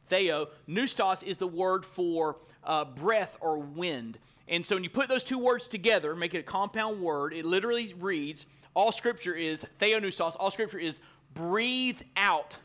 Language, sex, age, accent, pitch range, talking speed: English, male, 30-49, American, 170-230 Hz, 170 wpm